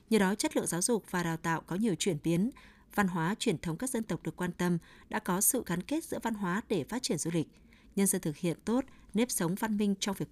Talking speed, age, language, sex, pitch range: 275 wpm, 20-39, Vietnamese, female, 170-230 Hz